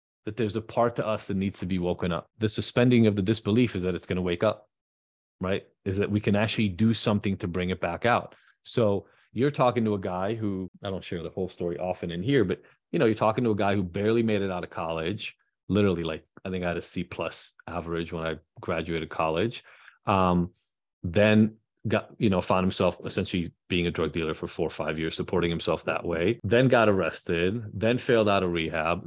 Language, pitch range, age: English, 85-110 Hz, 30-49